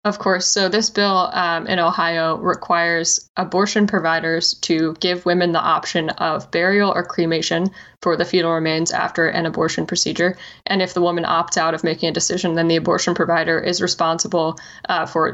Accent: American